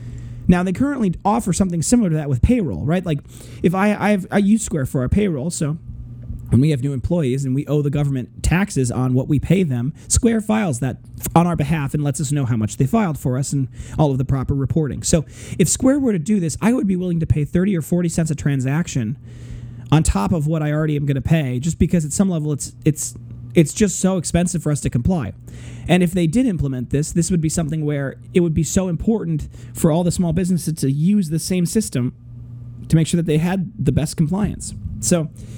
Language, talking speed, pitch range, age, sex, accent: English, 240 wpm, 130-180 Hz, 30-49, male, American